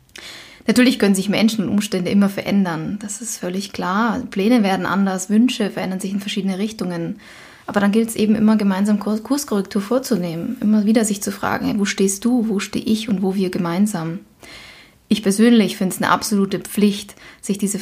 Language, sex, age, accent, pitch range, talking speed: German, female, 20-39, German, 190-220 Hz, 180 wpm